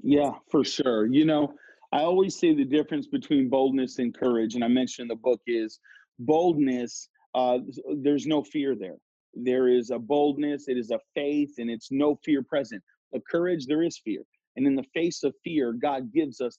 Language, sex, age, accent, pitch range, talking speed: English, male, 30-49, American, 135-185 Hz, 195 wpm